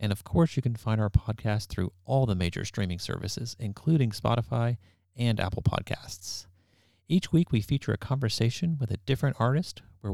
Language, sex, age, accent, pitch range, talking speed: English, male, 40-59, American, 100-125 Hz, 180 wpm